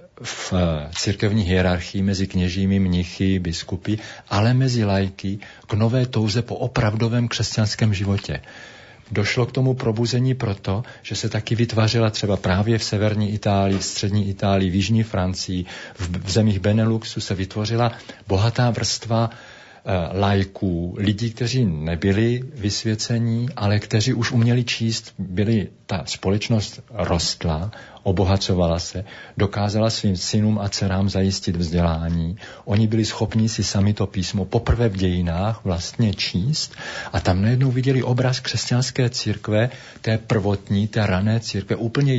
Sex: male